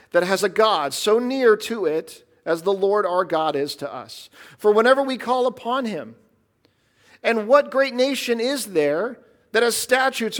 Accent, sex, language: American, male, English